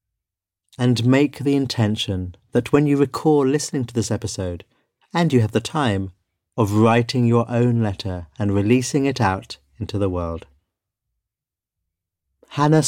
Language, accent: English, British